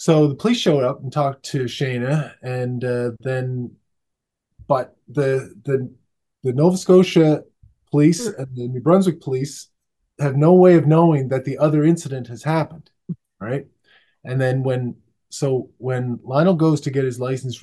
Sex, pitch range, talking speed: male, 115-145 Hz, 160 wpm